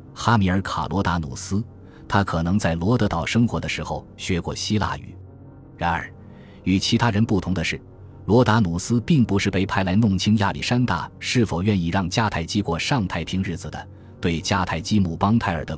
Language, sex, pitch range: Chinese, male, 85-110 Hz